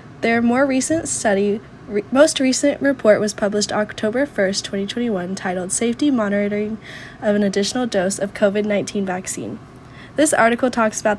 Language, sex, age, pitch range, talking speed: English, female, 10-29, 200-250 Hz, 145 wpm